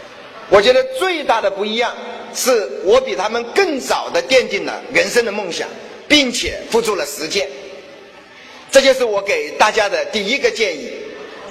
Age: 50-69